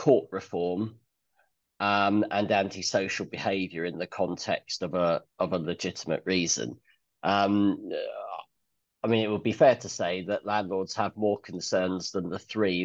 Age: 30-49